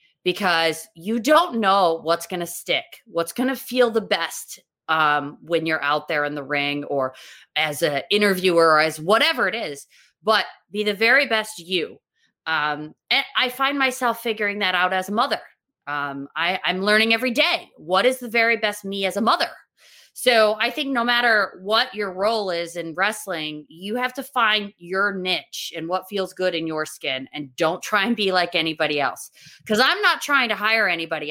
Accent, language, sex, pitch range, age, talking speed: American, English, female, 170-240 Hz, 20-39, 195 wpm